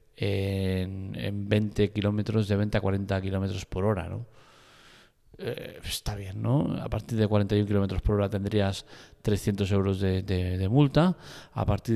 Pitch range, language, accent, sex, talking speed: 95-115 Hz, Spanish, Spanish, male, 160 wpm